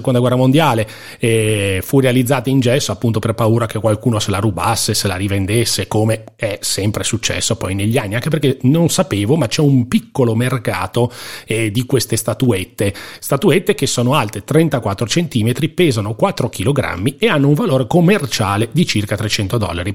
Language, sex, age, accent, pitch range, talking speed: Italian, male, 30-49, native, 110-135 Hz, 170 wpm